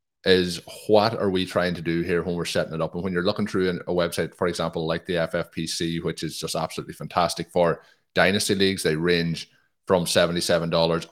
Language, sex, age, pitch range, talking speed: English, male, 30-49, 80-95 Hz, 205 wpm